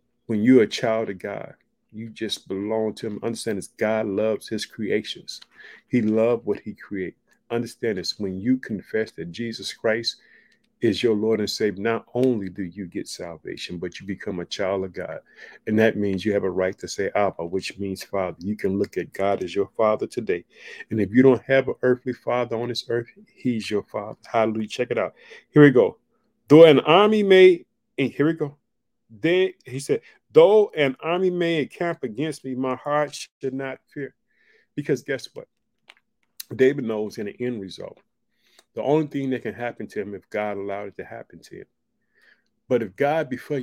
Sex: male